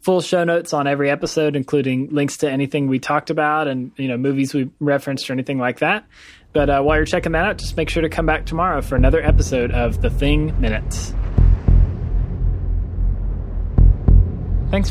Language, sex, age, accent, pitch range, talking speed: English, male, 20-39, American, 100-155 Hz, 180 wpm